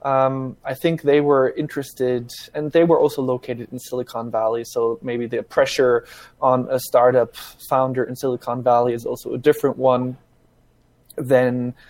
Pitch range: 125-150 Hz